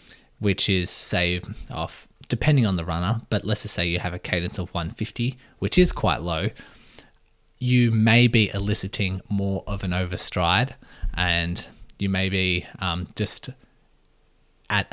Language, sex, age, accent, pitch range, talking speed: English, male, 20-39, Australian, 90-110 Hz, 160 wpm